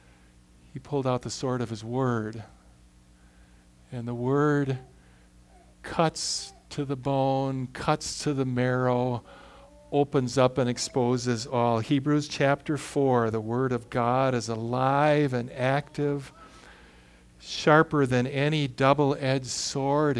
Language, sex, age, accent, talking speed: English, male, 50-69, American, 120 wpm